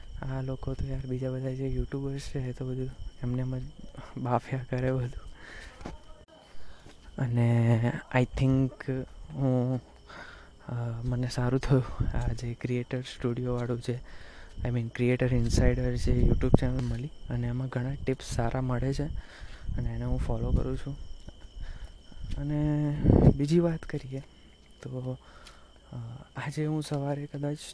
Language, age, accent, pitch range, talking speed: Gujarati, 20-39, native, 120-145 Hz, 95 wpm